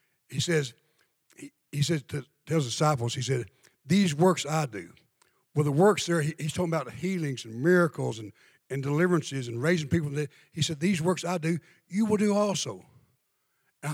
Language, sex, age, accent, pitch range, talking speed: English, male, 60-79, American, 160-205 Hz, 185 wpm